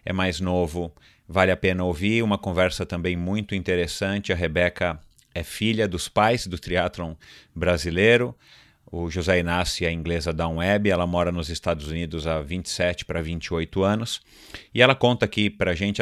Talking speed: 170 wpm